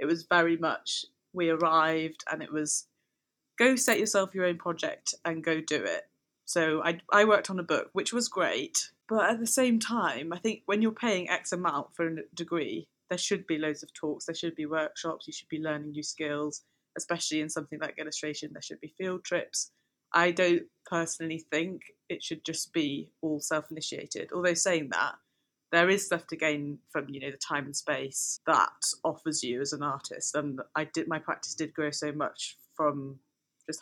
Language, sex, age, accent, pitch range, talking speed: English, female, 20-39, British, 155-185 Hz, 200 wpm